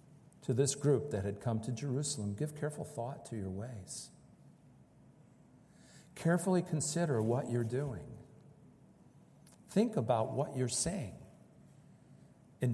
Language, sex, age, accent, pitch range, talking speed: English, male, 50-69, American, 125-170 Hz, 115 wpm